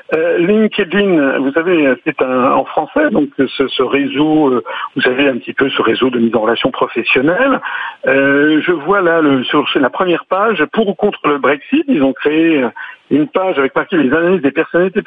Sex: male